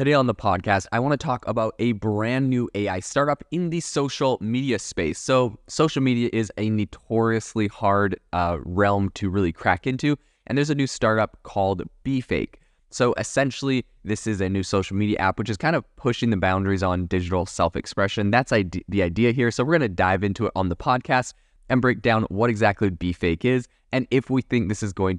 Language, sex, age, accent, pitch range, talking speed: English, male, 20-39, American, 95-115 Hz, 205 wpm